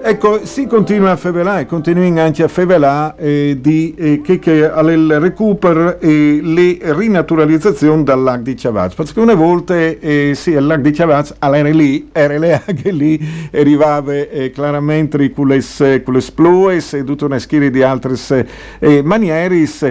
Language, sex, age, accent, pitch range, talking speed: Italian, male, 50-69, native, 140-165 Hz, 165 wpm